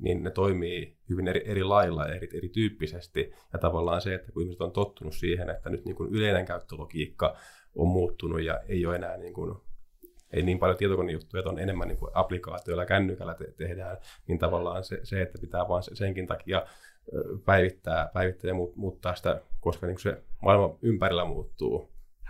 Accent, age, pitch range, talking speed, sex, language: native, 30-49, 85-95 Hz, 180 wpm, male, Finnish